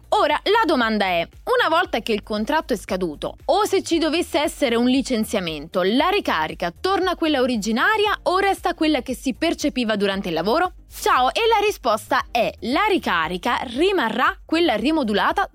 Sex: female